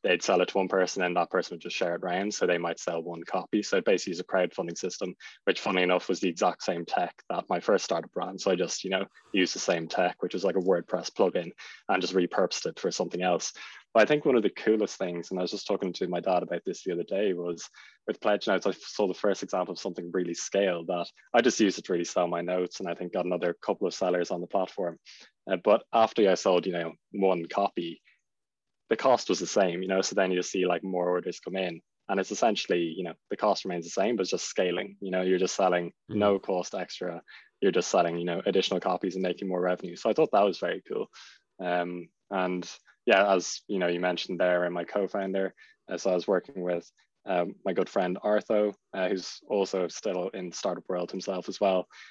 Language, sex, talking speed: English, male, 250 wpm